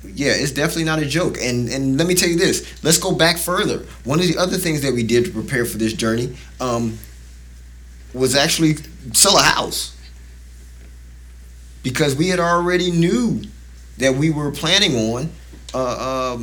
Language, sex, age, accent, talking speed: English, male, 20-39, American, 175 wpm